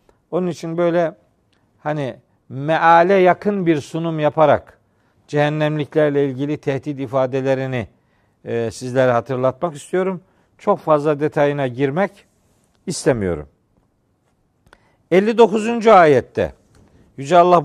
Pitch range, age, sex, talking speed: 115-170 Hz, 50-69, male, 85 wpm